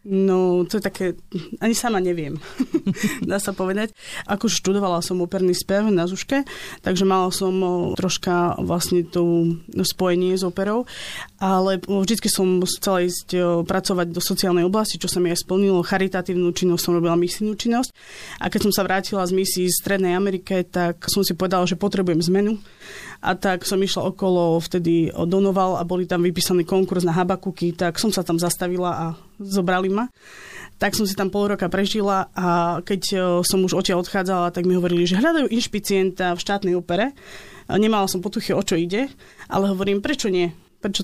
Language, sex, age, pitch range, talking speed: Slovak, female, 20-39, 180-200 Hz, 175 wpm